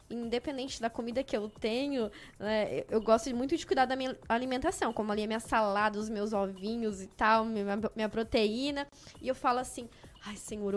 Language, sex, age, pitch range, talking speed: Portuguese, female, 10-29, 225-310 Hz, 190 wpm